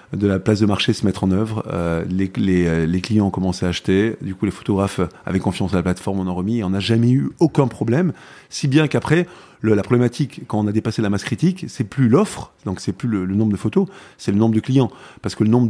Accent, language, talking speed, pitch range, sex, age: French, French, 270 wpm, 95-115 Hz, male, 30-49